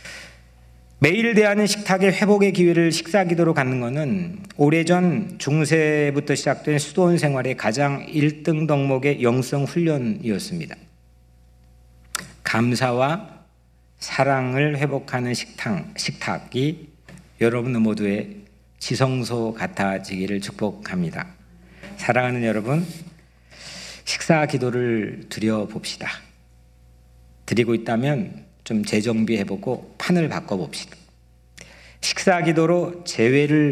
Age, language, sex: 50-69, Korean, male